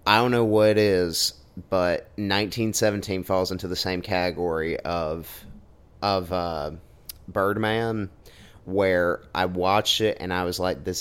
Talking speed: 140 wpm